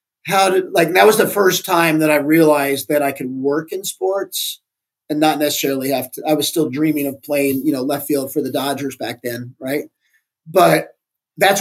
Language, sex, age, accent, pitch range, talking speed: English, male, 30-49, American, 140-160 Hz, 205 wpm